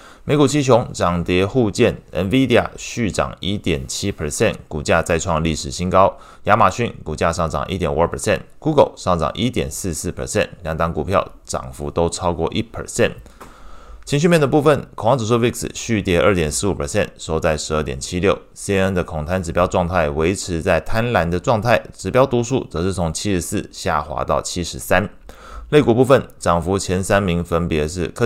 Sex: male